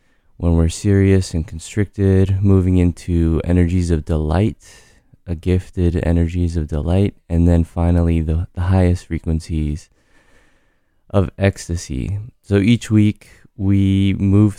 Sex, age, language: male, 20-39, English